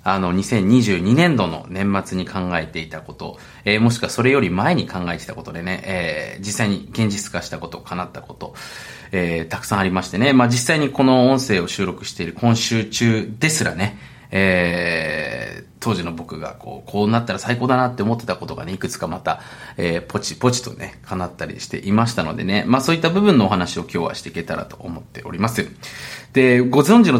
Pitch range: 95-130 Hz